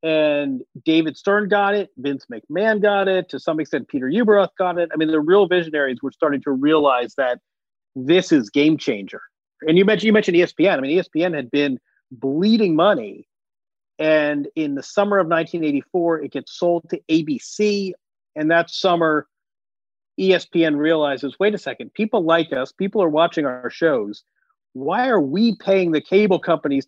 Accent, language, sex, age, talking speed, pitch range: American, English, male, 40-59, 170 wpm, 150-200 Hz